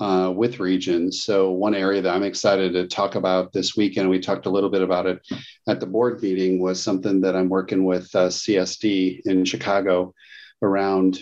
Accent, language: American, English